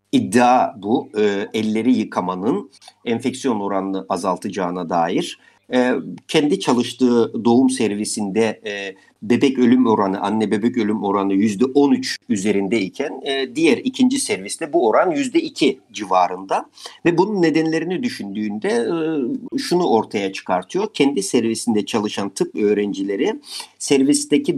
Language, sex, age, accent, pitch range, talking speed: Turkish, male, 50-69, native, 110-145 Hz, 115 wpm